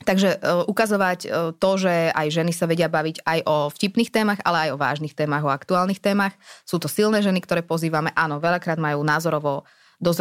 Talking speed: 200 wpm